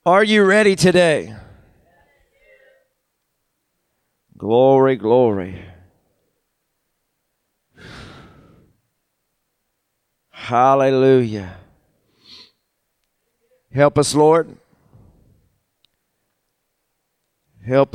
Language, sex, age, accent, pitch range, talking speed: English, male, 40-59, American, 115-135 Hz, 35 wpm